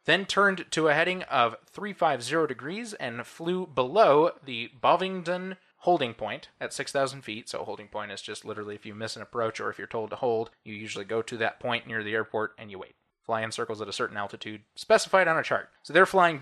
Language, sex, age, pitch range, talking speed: English, male, 20-39, 120-185 Hz, 225 wpm